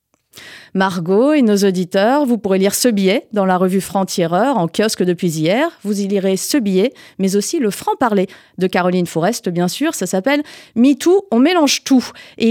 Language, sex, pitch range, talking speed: French, female, 200-280 Hz, 180 wpm